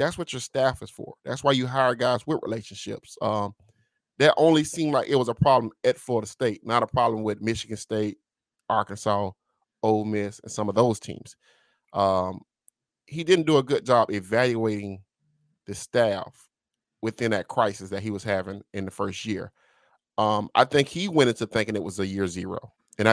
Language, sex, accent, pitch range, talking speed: English, male, American, 105-130 Hz, 190 wpm